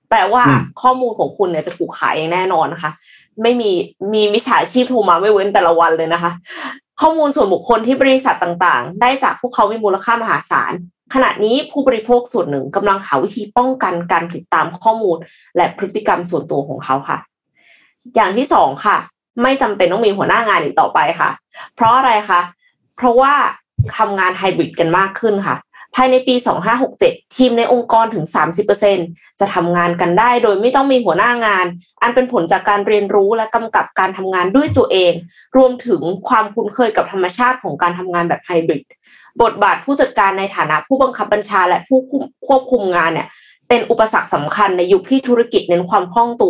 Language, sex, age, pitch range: Thai, female, 20-39, 180-250 Hz